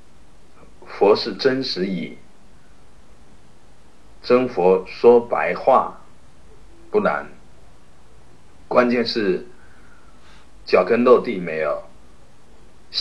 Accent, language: native, Chinese